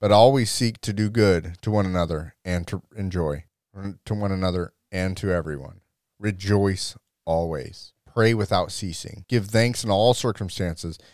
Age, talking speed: 30-49, 150 wpm